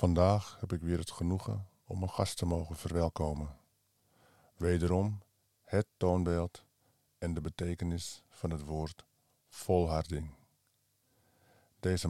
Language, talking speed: Dutch, 115 wpm